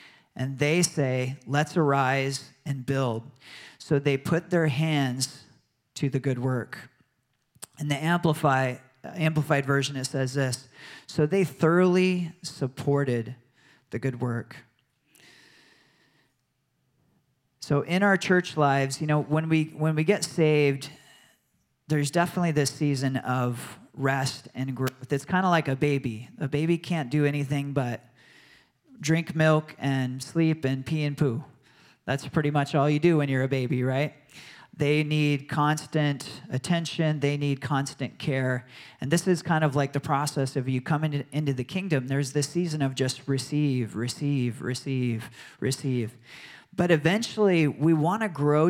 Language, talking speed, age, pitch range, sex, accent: English, 145 wpm, 40-59, 130-155 Hz, male, American